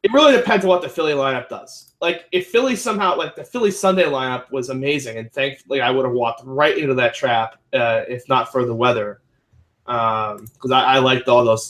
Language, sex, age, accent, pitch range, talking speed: English, male, 20-39, American, 125-180 Hz, 220 wpm